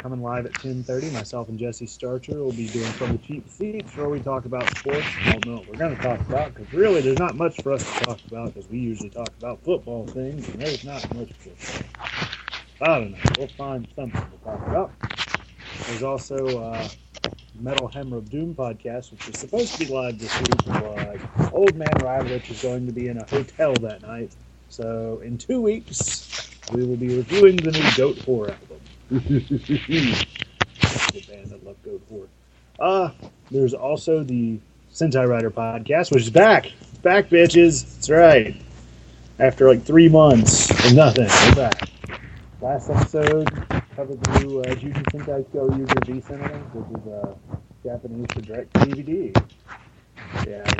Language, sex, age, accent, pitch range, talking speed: English, male, 30-49, American, 115-140 Hz, 180 wpm